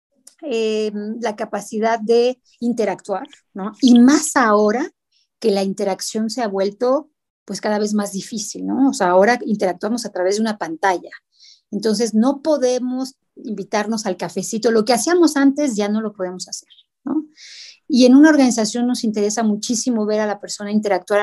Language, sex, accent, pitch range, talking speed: Spanish, female, Mexican, 200-250 Hz, 165 wpm